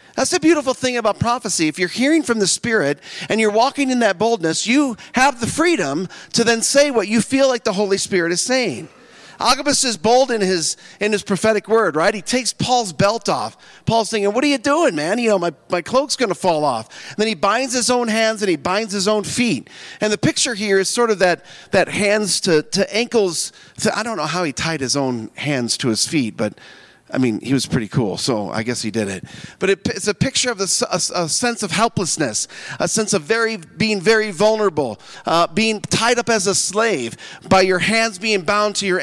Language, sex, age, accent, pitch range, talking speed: English, male, 40-59, American, 175-235 Hz, 230 wpm